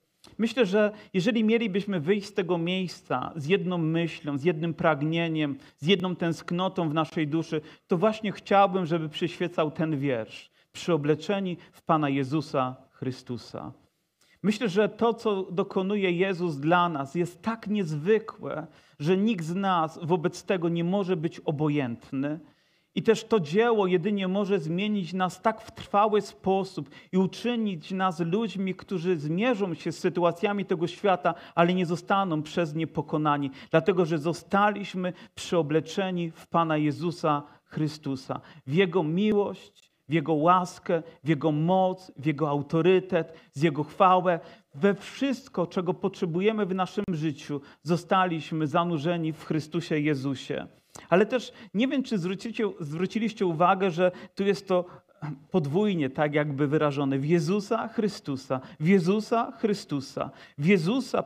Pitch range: 160-200 Hz